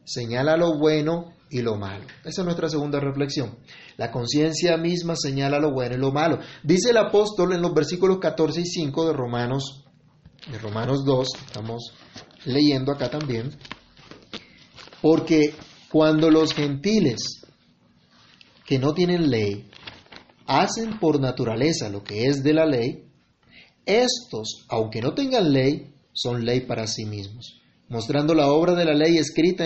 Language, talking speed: Spanish, 145 wpm